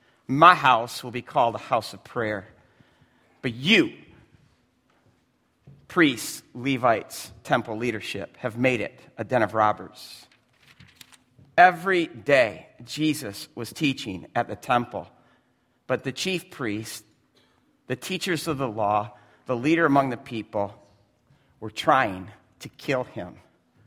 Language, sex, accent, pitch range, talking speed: English, male, American, 115-150 Hz, 125 wpm